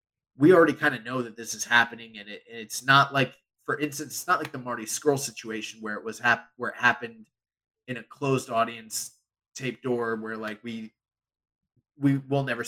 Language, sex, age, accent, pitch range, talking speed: English, male, 20-39, American, 105-130 Hz, 200 wpm